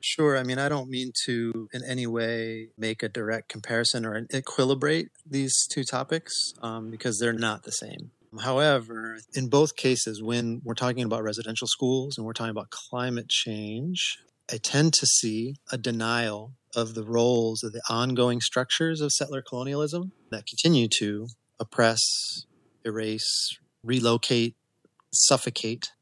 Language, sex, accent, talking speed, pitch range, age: English, male, American, 150 wpm, 110-130 Hz, 30-49